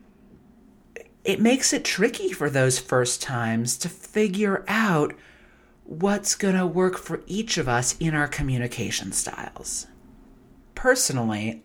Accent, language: American, English